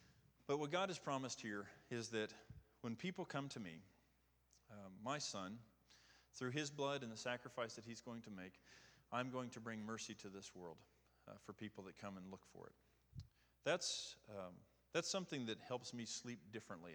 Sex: male